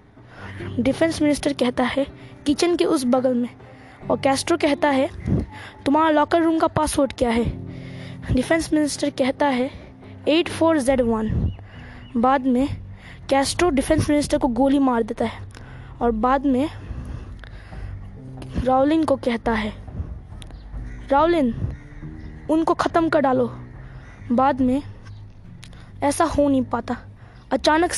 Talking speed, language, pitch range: 120 wpm, Hindi, 240-295 Hz